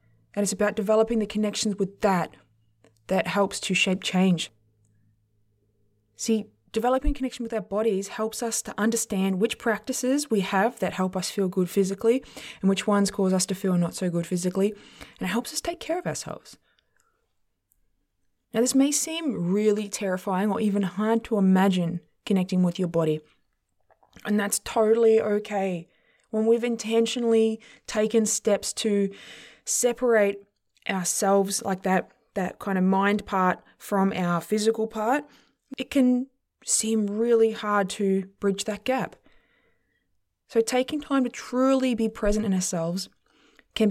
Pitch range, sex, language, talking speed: 185-225 Hz, female, English, 150 wpm